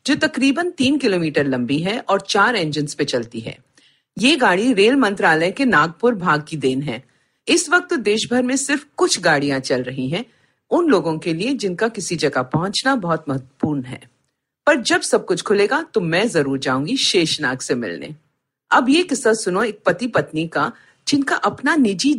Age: 50-69